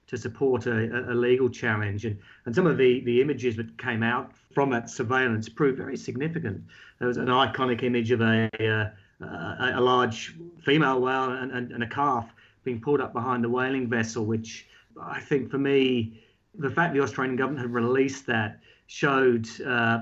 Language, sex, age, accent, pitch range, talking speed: English, male, 40-59, British, 115-140 Hz, 185 wpm